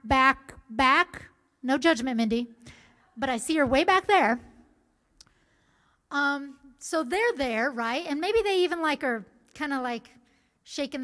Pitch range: 230-285 Hz